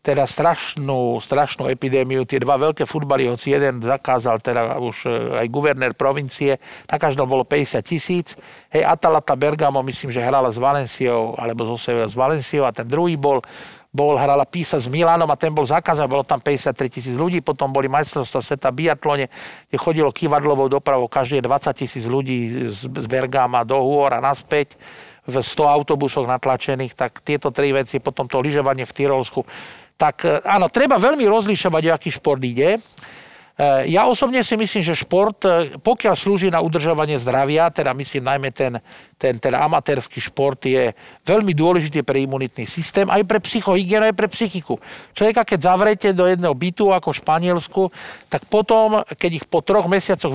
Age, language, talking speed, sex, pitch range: 50-69, Slovak, 165 wpm, male, 135-175 Hz